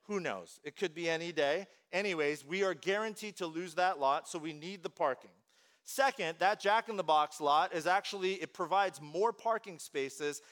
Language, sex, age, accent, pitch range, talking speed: English, male, 40-59, American, 165-220 Hz, 175 wpm